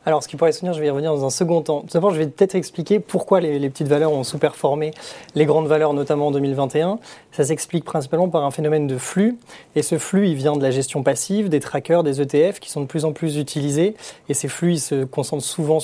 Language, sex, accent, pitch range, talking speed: French, male, French, 140-165 Hz, 260 wpm